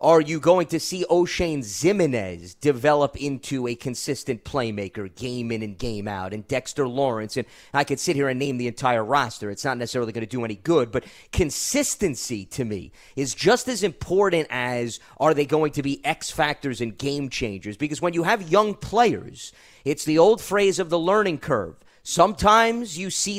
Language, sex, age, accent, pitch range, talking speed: English, male, 30-49, American, 135-185 Hz, 190 wpm